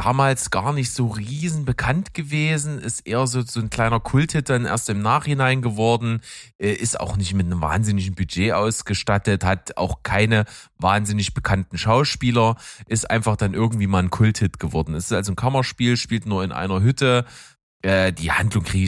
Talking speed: 170 wpm